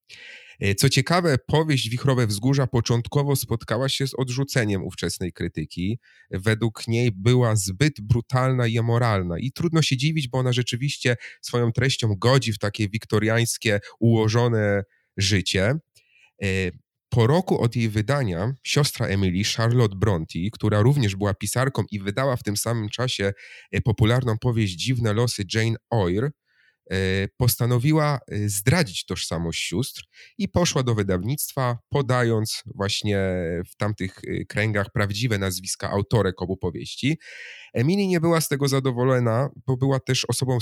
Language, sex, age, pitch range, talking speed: Polish, male, 30-49, 100-130 Hz, 130 wpm